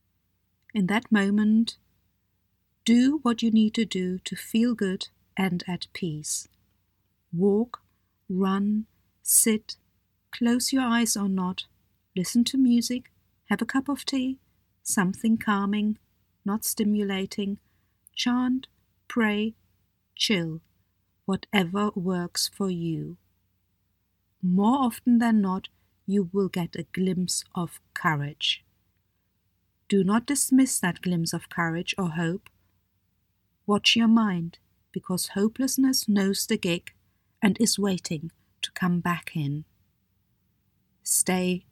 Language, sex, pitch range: English, female, 160-225 Hz